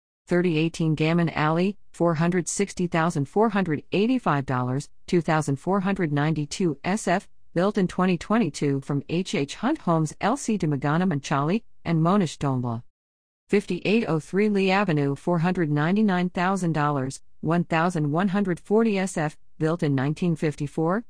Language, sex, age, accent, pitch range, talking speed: English, female, 50-69, American, 150-195 Hz, 80 wpm